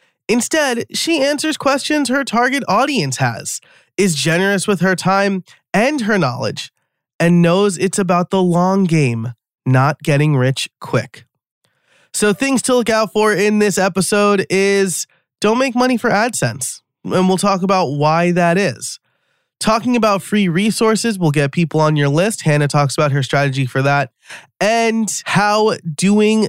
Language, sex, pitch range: English, male, 140-195 Hz